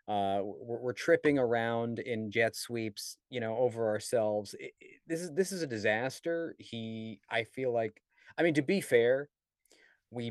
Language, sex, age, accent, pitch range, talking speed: English, male, 30-49, American, 100-130 Hz, 165 wpm